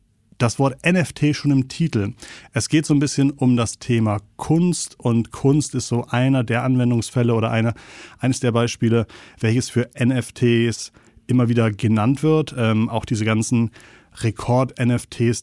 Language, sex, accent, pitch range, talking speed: German, male, German, 115-130 Hz, 150 wpm